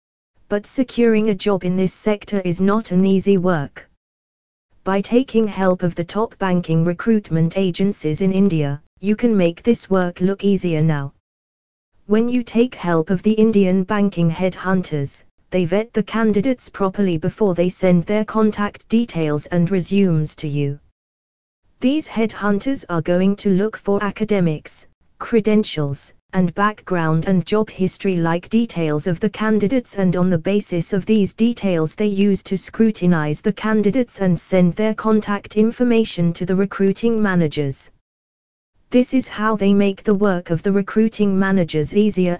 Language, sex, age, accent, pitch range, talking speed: English, female, 20-39, British, 170-215 Hz, 155 wpm